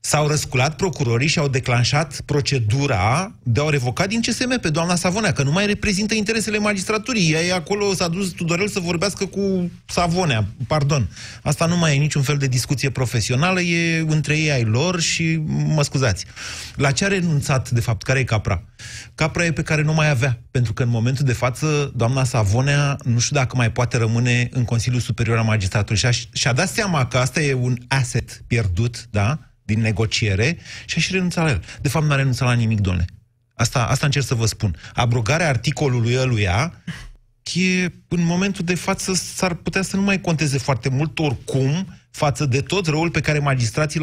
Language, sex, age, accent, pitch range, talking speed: Romanian, male, 30-49, native, 120-170 Hz, 195 wpm